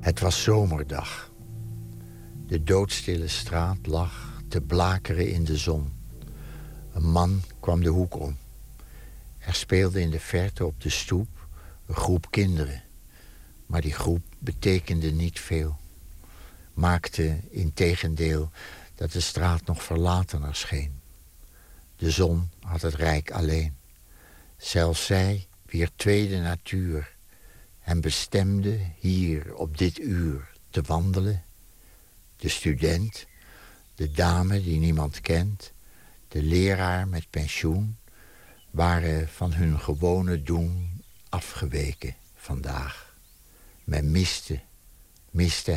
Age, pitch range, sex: 60-79, 80-95 Hz, male